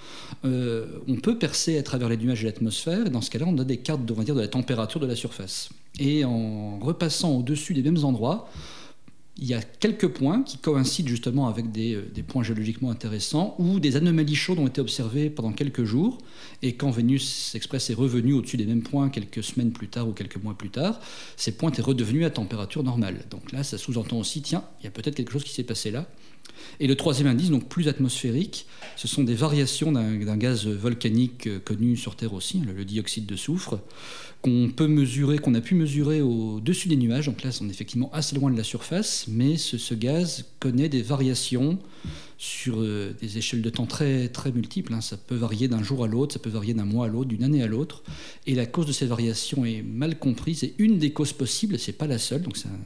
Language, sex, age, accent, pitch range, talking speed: French, male, 40-59, French, 115-145 Hz, 225 wpm